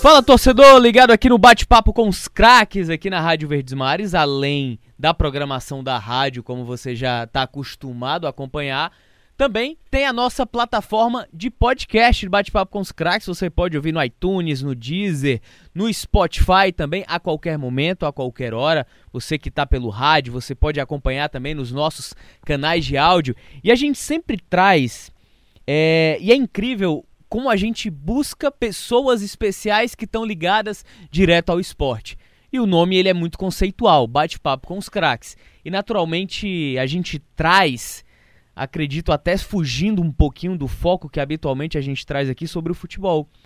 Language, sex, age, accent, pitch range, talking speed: Portuguese, male, 20-39, Brazilian, 140-205 Hz, 165 wpm